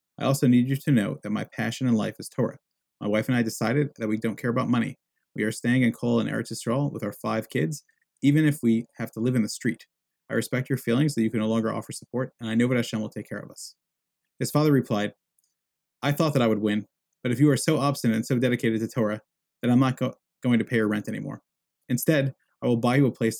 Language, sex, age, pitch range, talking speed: English, male, 30-49, 115-140 Hz, 265 wpm